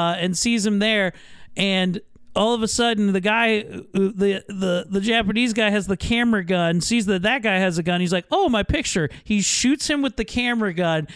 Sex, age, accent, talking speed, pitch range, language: male, 40-59, American, 215 wpm, 205-285 Hz, English